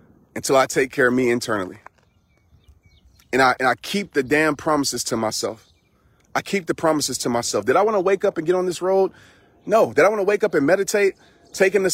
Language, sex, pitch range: English, male, 155-220 Hz